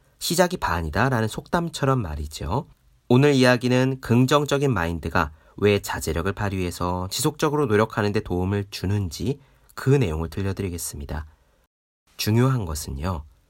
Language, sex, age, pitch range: Korean, male, 40-59, 90-135 Hz